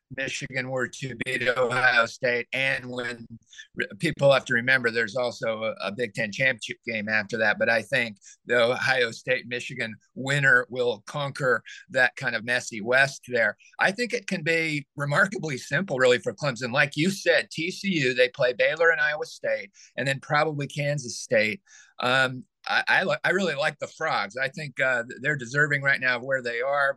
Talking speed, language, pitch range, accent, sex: 185 wpm, English, 125-160 Hz, American, male